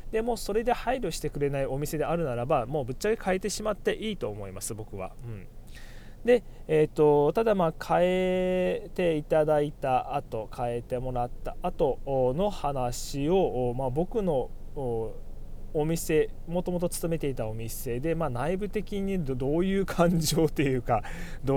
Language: Japanese